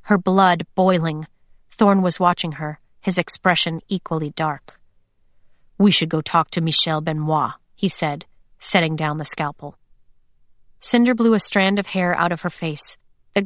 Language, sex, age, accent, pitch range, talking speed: English, female, 30-49, American, 170-215 Hz, 155 wpm